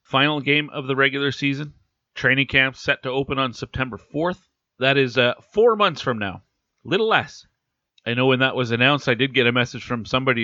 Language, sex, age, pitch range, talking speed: English, male, 40-59, 115-145 Hz, 205 wpm